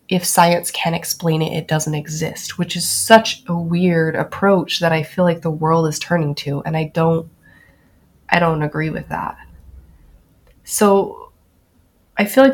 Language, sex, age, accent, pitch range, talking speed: English, female, 20-39, American, 155-175 Hz, 165 wpm